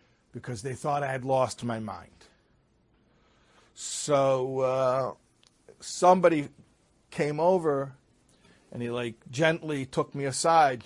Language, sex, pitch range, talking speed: English, male, 130-180 Hz, 110 wpm